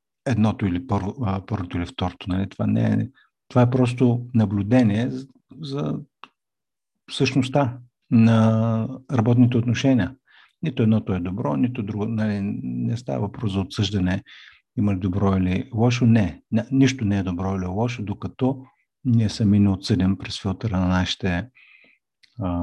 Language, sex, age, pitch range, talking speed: Bulgarian, male, 50-69, 95-120 Hz, 145 wpm